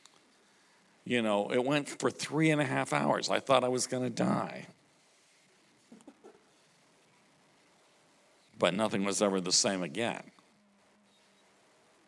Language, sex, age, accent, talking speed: English, male, 50-69, American, 120 wpm